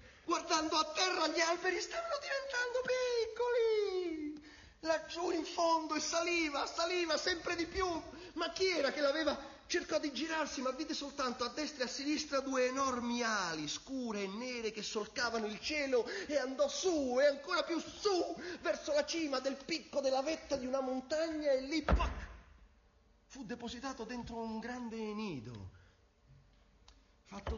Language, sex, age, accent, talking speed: Italian, male, 40-59, native, 150 wpm